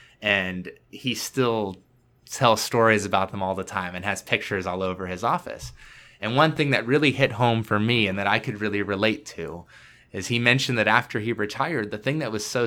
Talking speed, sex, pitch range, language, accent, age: 215 wpm, male, 105-130 Hz, English, American, 20-39